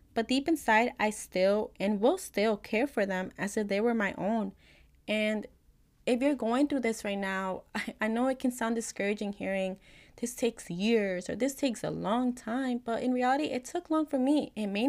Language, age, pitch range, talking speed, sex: English, 20-39, 200-250 Hz, 210 wpm, female